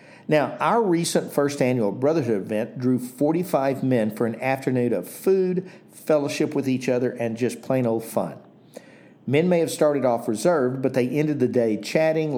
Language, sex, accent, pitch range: English, male, American, 120-155 Hz